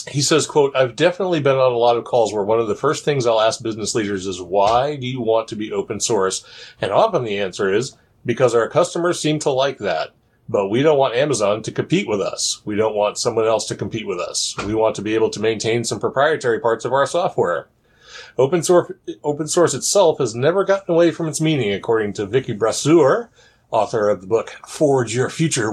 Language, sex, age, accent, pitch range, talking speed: English, male, 30-49, American, 110-160 Hz, 220 wpm